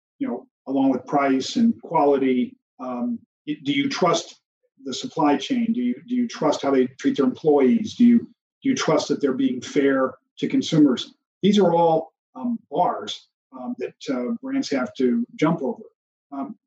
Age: 40-59